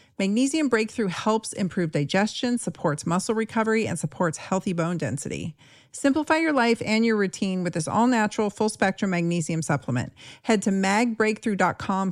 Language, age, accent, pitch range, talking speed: English, 40-59, American, 155-200 Hz, 150 wpm